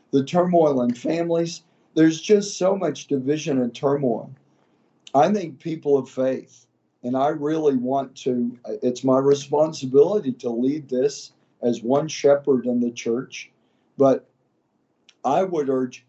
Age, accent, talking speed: 50-69, American, 140 wpm